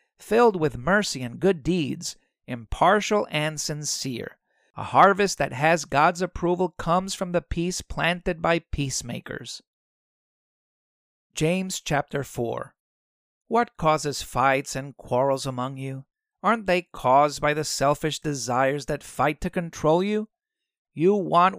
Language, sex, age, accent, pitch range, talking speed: English, male, 50-69, American, 145-195 Hz, 130 wpm